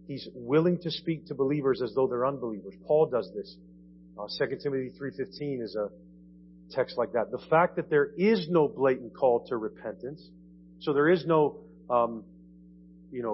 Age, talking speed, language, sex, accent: 40-59, 175 wpm, English, male, American